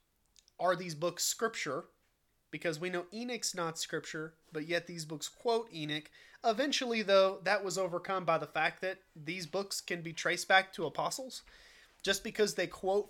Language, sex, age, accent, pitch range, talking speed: English, male, 30-49, American, 165-200 Hz, 170 wpm